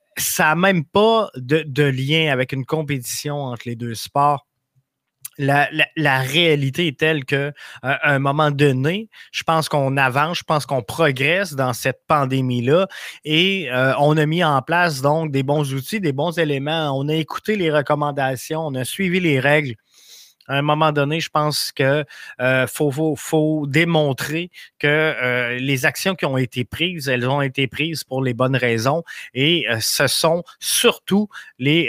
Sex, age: male, 20-39